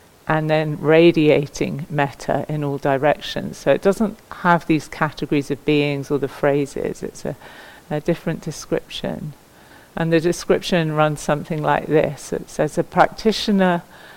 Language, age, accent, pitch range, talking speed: English, 50-69, British, 145-165 Hz, 145 wpm